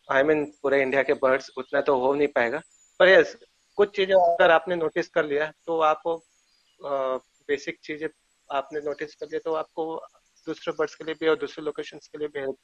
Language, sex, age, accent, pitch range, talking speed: Hindi, male, 30-49, native, 135-155 Hz, 205 wpm